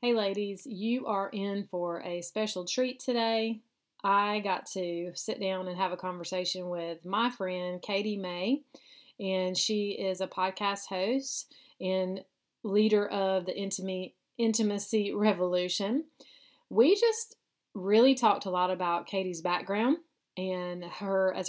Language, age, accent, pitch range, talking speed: English, 30-49, American, 185-225 Hz, 135 wpm